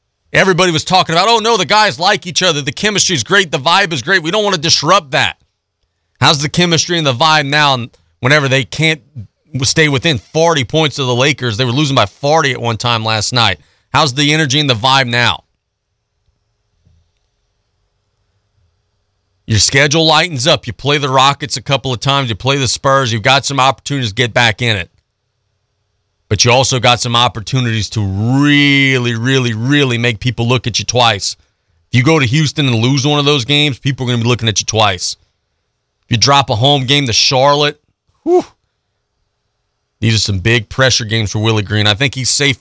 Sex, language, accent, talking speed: male, English, American, 200 wpm